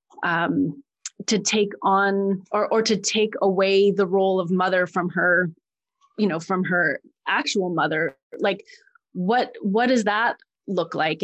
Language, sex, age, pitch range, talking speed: English, female, 30-49, 185-220 Hz, 150 wpm